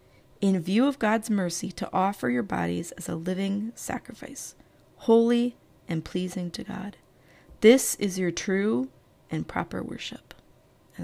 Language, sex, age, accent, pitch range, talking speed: English, female, 30-49, American, 185-240 Hz, 140 wpm